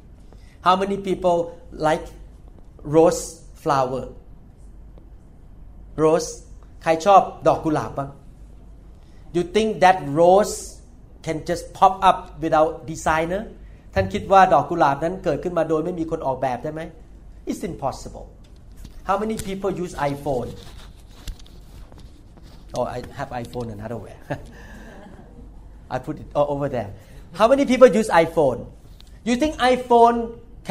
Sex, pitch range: male, 150-205 Hz